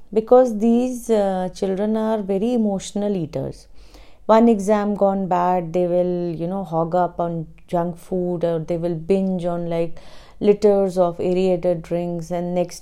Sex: female